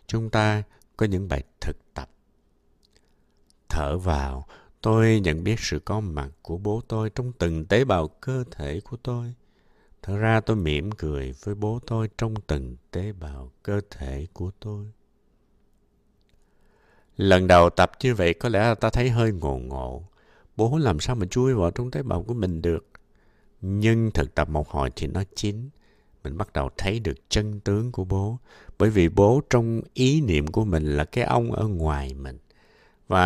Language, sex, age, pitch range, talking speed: Vietnamese, male, 60-79, 80-115 Hz, 175 wpm